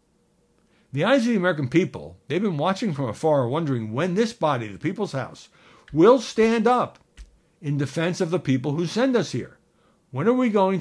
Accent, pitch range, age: American, 120-170 Hz, 60-79